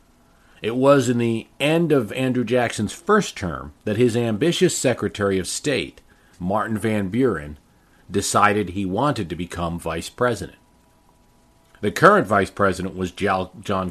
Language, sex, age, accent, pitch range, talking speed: English, male, 40-59, American, 90-115 Hz, 140 wpm